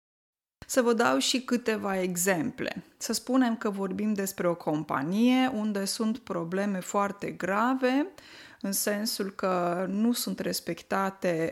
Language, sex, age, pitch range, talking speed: Romanian, female, 20-39, 180-235 Hz, 125 wpm